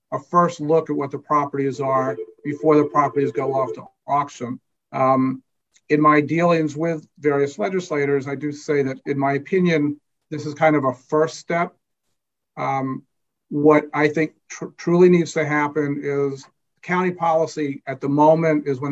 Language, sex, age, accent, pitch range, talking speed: English, male, 50-69, American, 135-150 Hz, 165 wpm